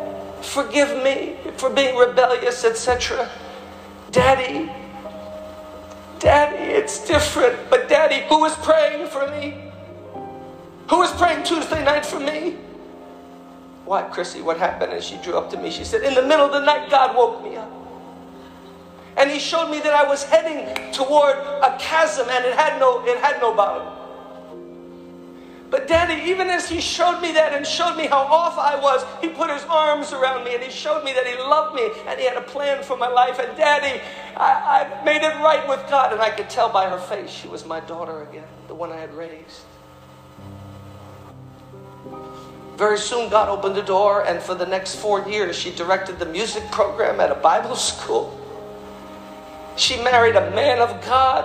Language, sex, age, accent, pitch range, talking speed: English, male, 50-69, American, 180-300 Hz, 180 wpm